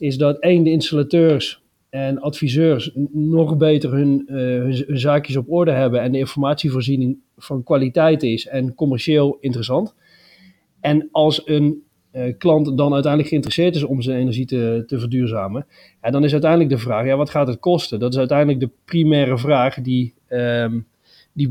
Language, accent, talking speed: Dutch, Dutch, 160 wpm